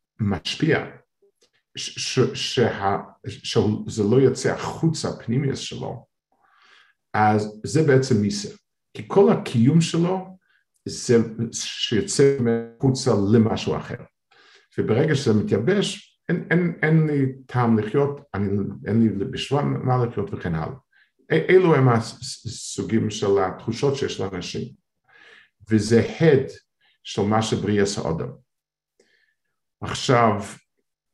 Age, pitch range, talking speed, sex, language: 50-69, 105-135 Hz, 105 wpm, male, English